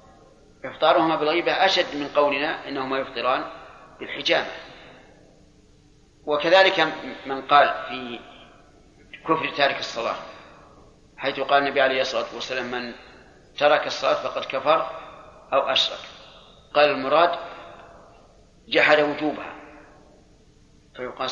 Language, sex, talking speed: Arabic, male, 95 wpm